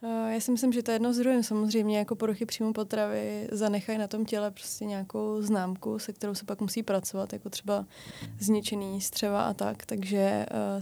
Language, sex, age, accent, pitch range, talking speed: Czech, female, 20-39, native, 205-225 Hz, 185 wpm